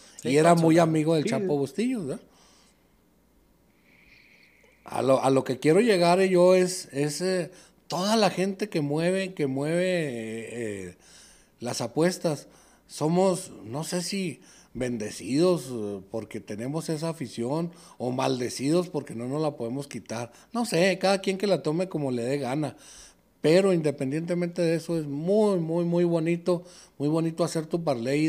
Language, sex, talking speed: Spanish, male, 155 wpm